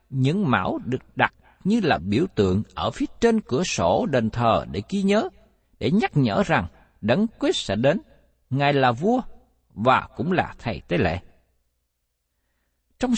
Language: Vietnamese